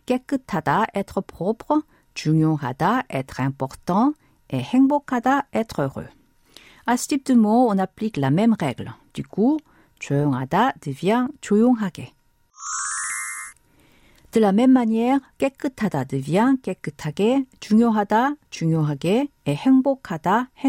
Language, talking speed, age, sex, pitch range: French, 100 wpm, 50-69, female, 160-240 Hz